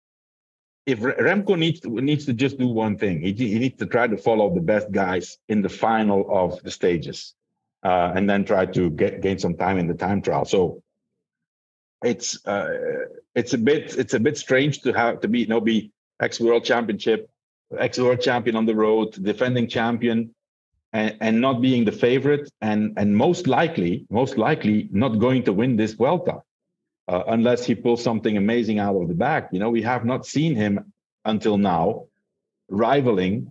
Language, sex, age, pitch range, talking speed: English, male, 50-69, 105-135 Hz, 190 wpm